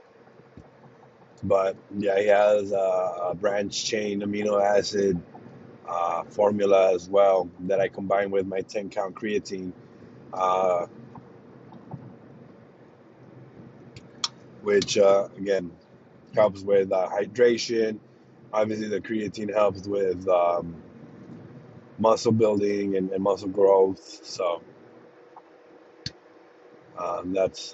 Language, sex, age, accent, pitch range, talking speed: English, male, 30-49, American, 95-115 Hz, 95 wpm